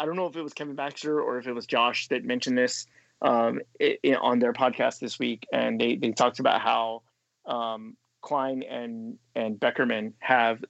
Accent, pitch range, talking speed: American, 115-145 Hz, 200 wpm